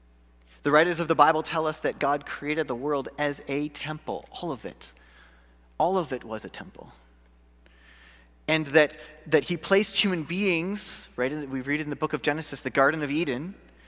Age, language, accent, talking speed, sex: 30-49, English, American, 190 wpm, male